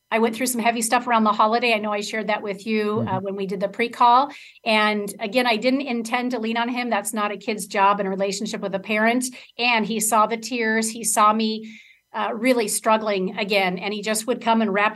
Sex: female